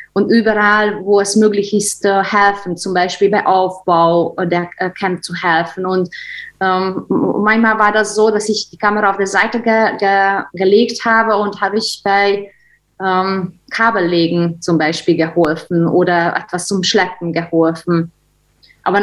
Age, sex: 20-39, female